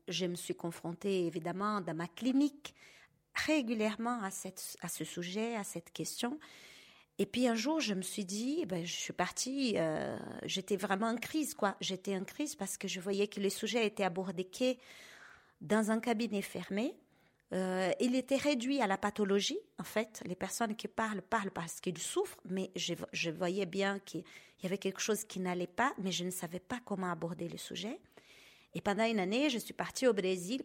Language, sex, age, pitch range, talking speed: French, female, 40-59, 185-240 Hz, 195 wpm